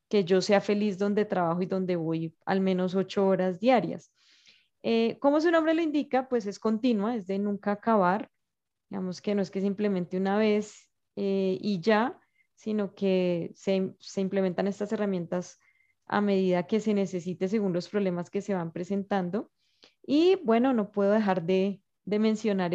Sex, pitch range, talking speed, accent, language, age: female, 185-215 Hz, 170 wpm, Colombian, Spanish, 20-39